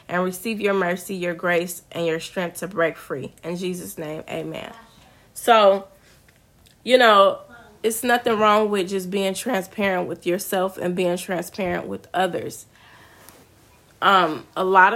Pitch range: 175-215 Hz